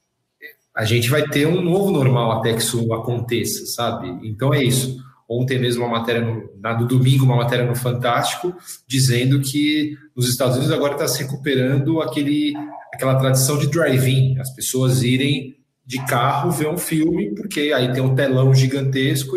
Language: Portuguese